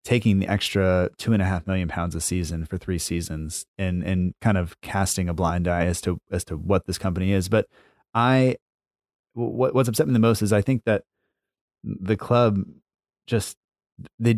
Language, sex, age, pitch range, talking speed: English, male, 30-49, 90-105 Hz, 190 wpm